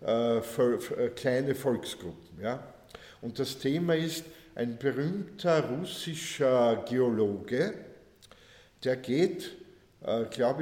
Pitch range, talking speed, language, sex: 115-140 Hz, 85 wpm, German, male